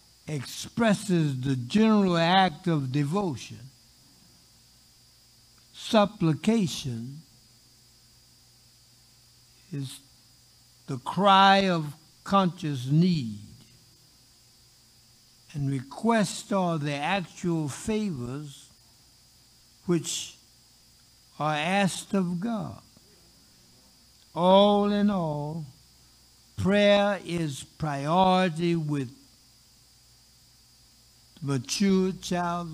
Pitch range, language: 120-180 Hz, English